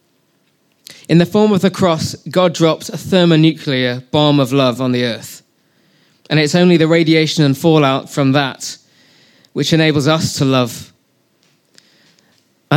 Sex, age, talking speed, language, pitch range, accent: male, 20-39, 145 wpm, English, 130-165 Hz, British